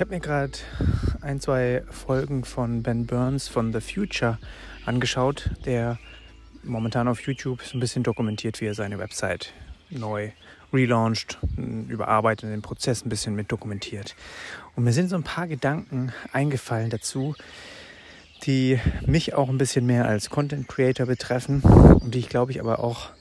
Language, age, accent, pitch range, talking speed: German, 30-49, German, 110-135 Hz, 160 wpm